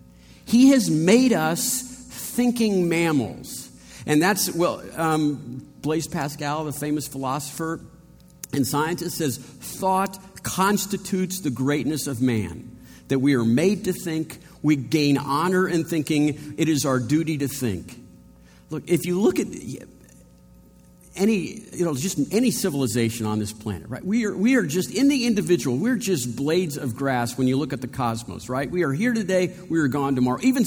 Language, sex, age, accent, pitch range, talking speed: English, male, 50-69, American, 125-190 Hz, 165 wpm